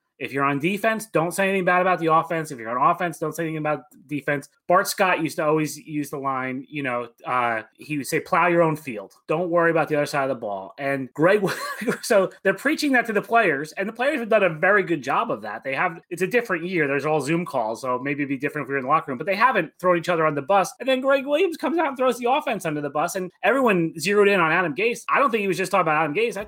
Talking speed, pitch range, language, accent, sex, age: 290 wpm, 145-190 Hz, English, American, male, 30-49